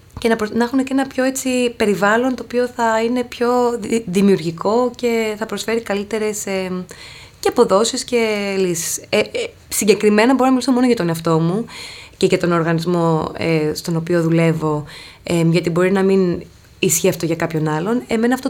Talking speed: 180 wpm